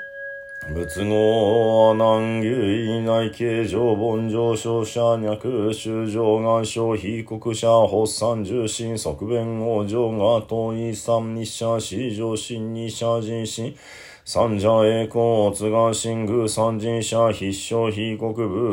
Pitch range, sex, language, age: 110-115 Hz, male, Japanese, 40-59